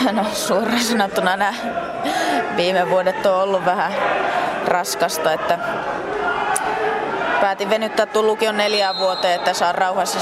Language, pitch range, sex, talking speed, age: Finnish, 180-290 Hz, female, 110 wpm, 20-39